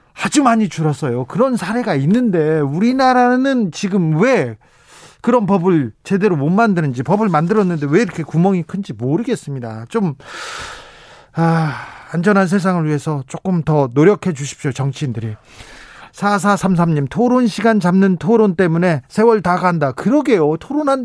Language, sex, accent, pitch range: Korean, male, native, 155-215 Hz